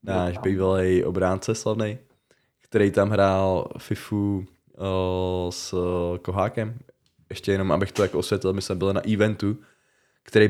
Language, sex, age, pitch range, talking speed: Czech, male, 20-39, 90-110 Hz, 130 wpm